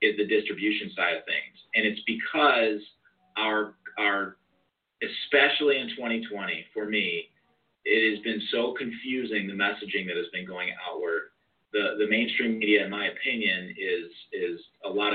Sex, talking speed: male, 155 wpm